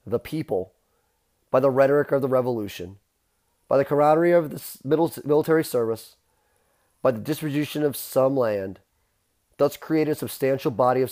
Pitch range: 115-145 Hz